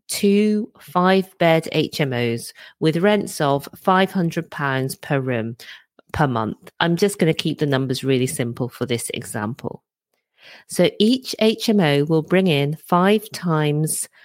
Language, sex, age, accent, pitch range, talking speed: English, female, 40-59, British, 145-195 Hz, 140 wpm